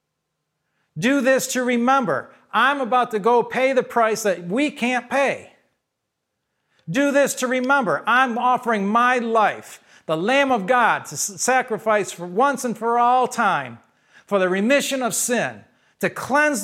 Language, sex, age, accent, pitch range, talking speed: English, male, 50-69, American, 205-255 Hz, 150 wpm